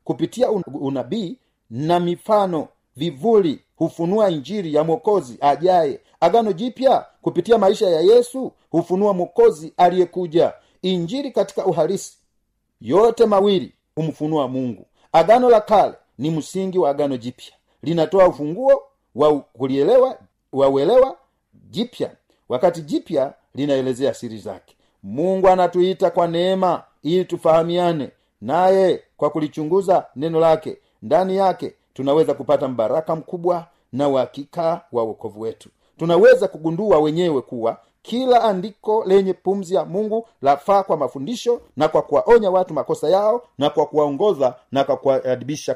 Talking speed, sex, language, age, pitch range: 120 wpm, male, Swahili, 40-59, 150-195 Hz